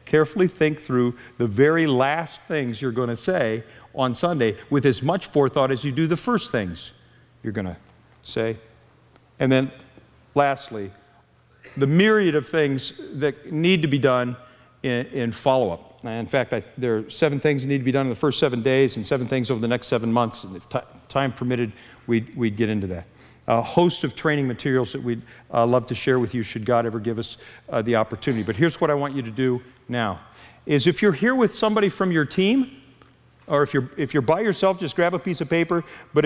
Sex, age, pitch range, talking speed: male, 50-69, 120-165 Hz, 210 wpm